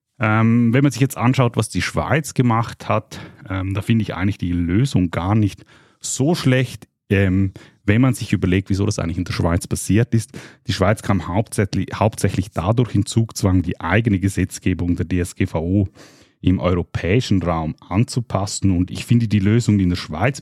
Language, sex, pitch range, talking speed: German, male, 90-115 Hz, 180 wpm